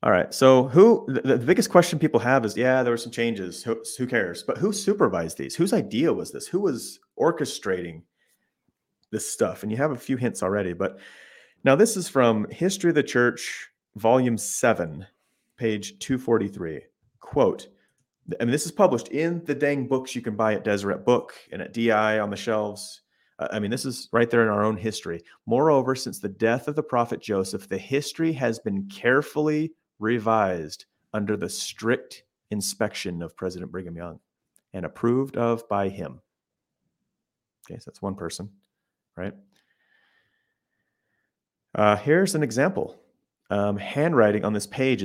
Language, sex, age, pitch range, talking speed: English, male, 30-49, 100-140 Hz, 170 wpm